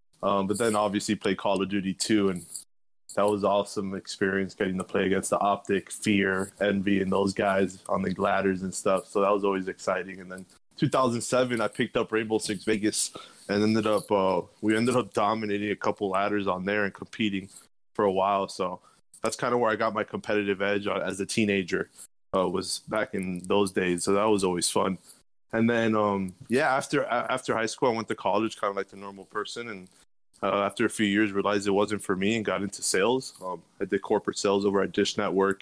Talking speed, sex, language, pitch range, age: 215 wpm, male, English, 95-105 Hz, 20-39